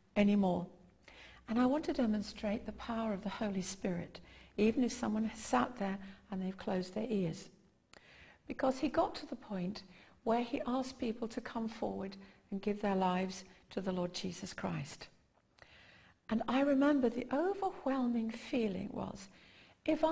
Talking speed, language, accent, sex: 160 wpm, English, British, female